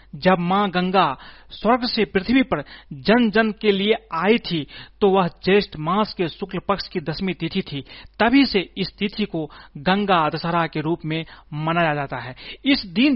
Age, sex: 40-59, male